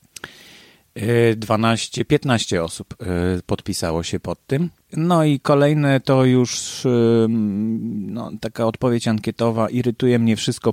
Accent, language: native, Polish